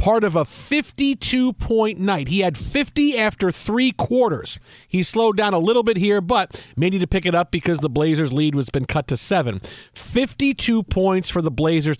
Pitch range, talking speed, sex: 155-220 Hz, 195 wpm, male